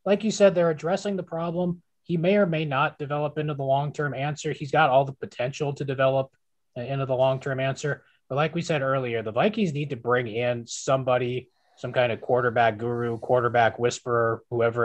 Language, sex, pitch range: English, male, 115-140 Hz